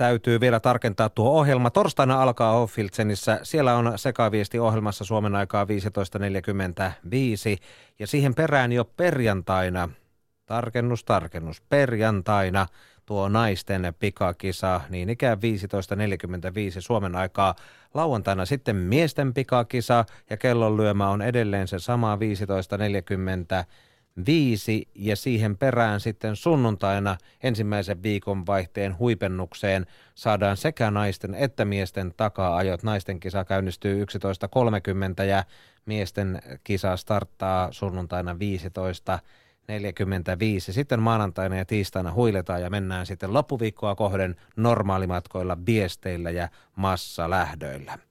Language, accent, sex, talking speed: Finnish, native, male, 100 wpm